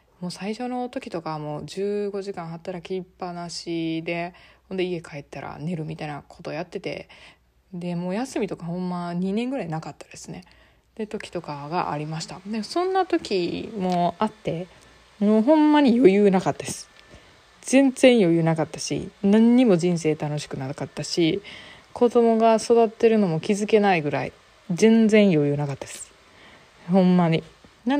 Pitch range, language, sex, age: 170-225 Hz, Japanese, female, 20-39